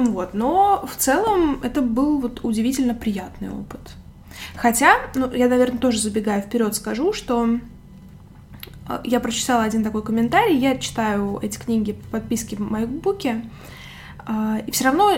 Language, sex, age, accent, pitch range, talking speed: Russian, female, 20-39, native, 215-255 Hz, 140 wpm